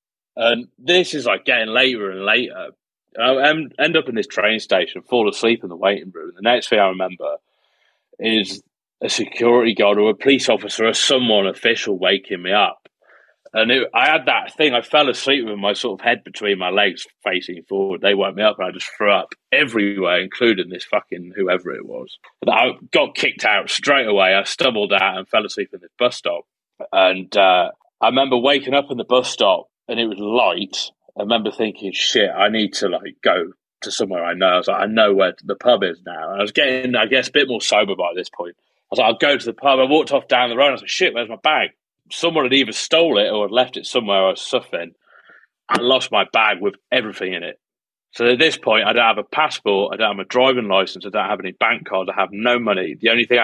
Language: English